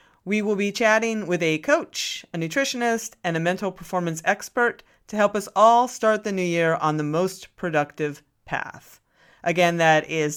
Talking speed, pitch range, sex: 175 wpm, 155-210 Hz, female